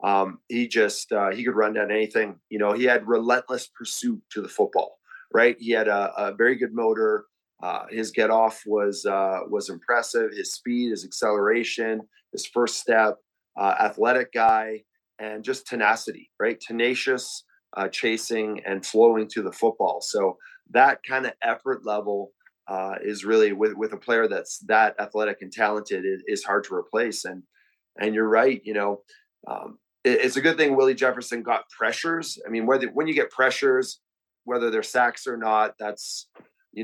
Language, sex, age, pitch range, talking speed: English, male, 30-49, 110-140 Hz, 175 wpm